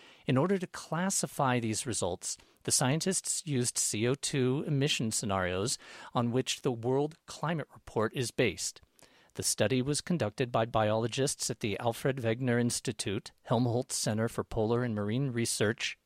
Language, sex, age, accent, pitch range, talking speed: English, male, 50-69, American, 115-165 Hz, 140 wpm